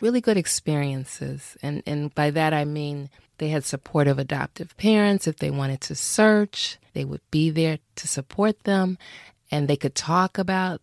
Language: English